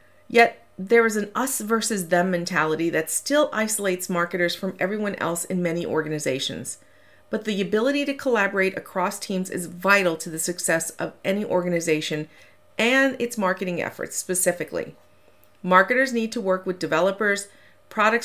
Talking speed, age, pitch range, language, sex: 150 wpm, 40-59, 175-225 Hz, English, female